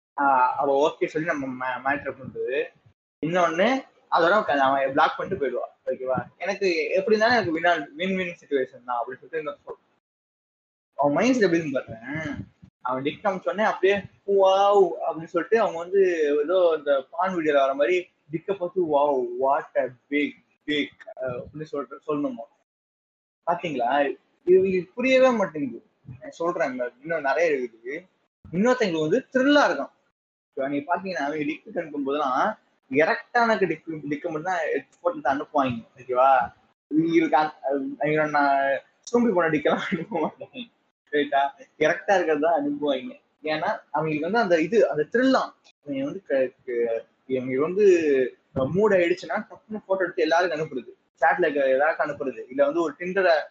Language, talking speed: Tamil, 55 wpm